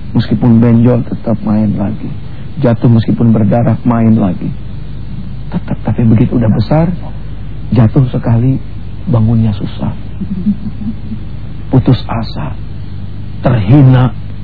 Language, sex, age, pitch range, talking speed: English, male, 50-69, 110-140 Hz, 90 wpm